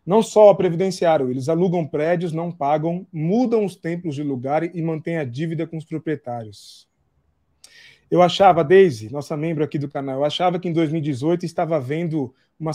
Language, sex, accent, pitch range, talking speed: Portuguese, male, Brazilian, 150-185 Hz, 175 wpm